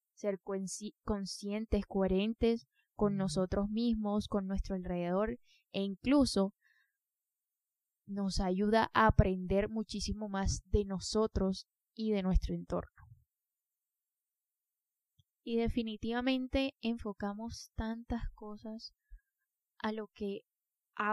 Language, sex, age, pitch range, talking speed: Spanish, female, 10-29, 195-230 Hz, 95 wpm